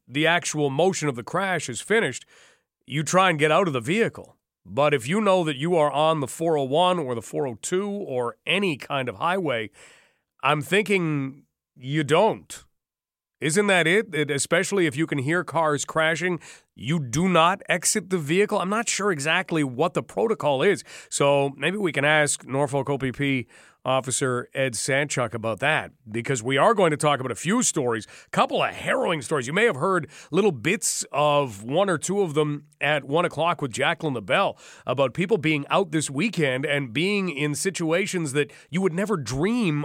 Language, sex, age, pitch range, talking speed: English, male, 40-59, 140-180 Hz, 185 wpm